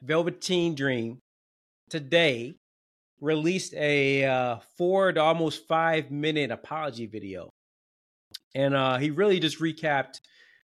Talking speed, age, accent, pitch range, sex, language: 100 wpm, 30-49, American, 125-145 Hz, male, English